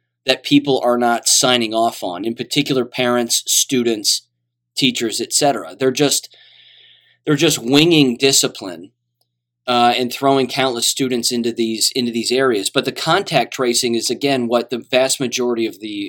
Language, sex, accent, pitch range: English, male, American, 115-135 Hz